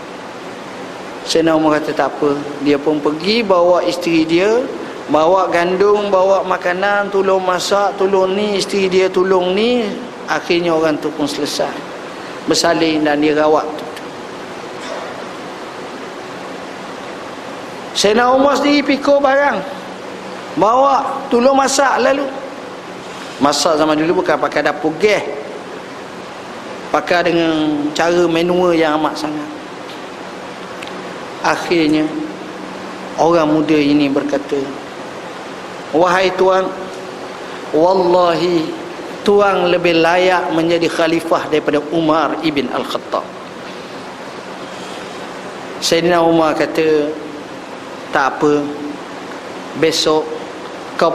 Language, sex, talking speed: Malay, male, 95 wpm